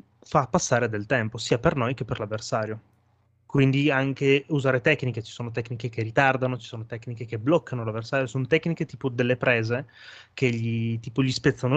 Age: 20-39